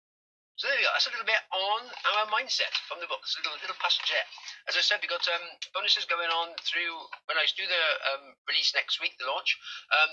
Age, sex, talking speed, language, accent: 40-59, male, 250 wpm, English, British